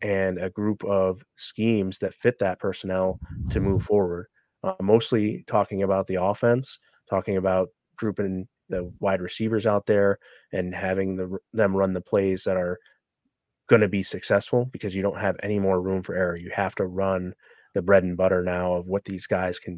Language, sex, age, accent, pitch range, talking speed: English, male, 30-49, American, 95-105 Hz, 190 wpm